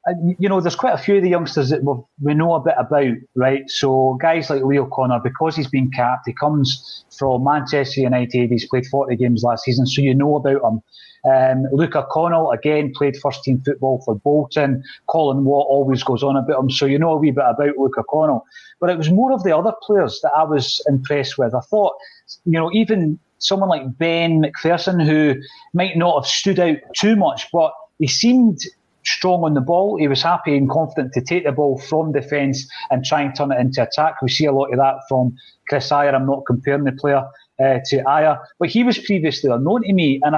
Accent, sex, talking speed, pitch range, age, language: British, male, 215 wpm, 135-160 Hz, 30-49, English